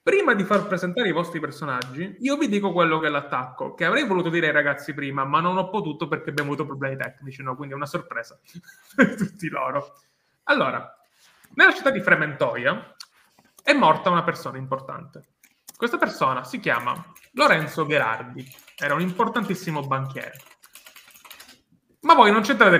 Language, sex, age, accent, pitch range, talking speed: Italian, male, 20-39, native, 145-210 Hz, 165 wpm